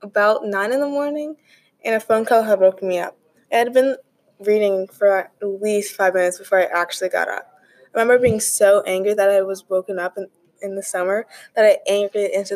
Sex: female